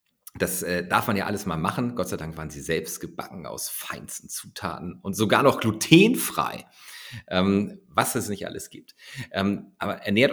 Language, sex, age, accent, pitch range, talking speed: German, male, 40-59, German, 85-110 Hz, 165 wpm